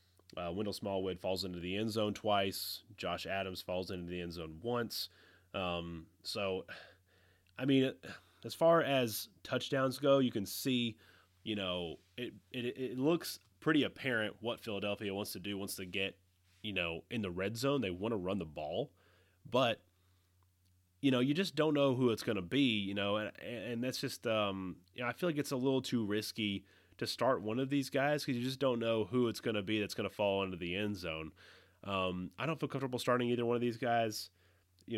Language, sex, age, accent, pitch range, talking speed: English, male, 30-49, American, 90-115 Hz, 210 wpm